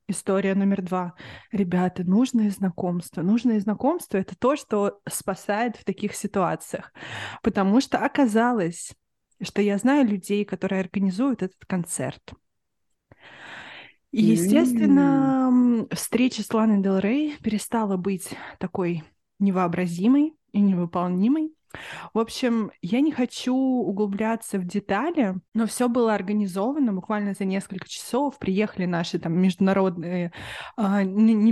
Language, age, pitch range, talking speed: Russian, 20-39, 190-230 Hz, 120 wpm